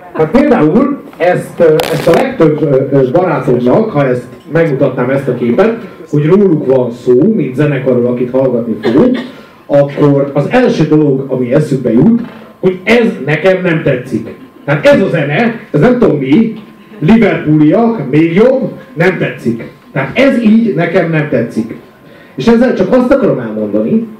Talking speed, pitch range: 145 wpm, 140-215 Hz